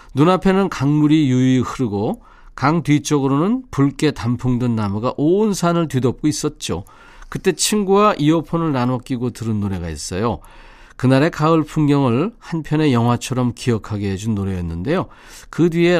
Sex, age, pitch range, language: male, 40-59, 110-160 Hz, Korean